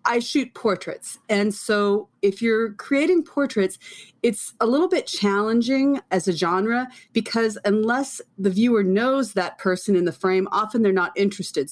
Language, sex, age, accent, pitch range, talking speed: English, female, 30-49, American, 175-230 Hz, 160 wpm